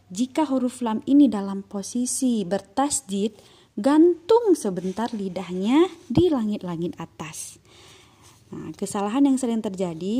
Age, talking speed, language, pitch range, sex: 20-39, 105 wpm, Indonesian, 190-240 Hz, female